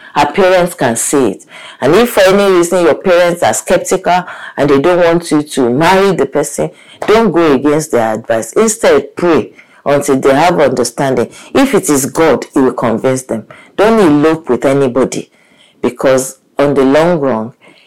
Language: English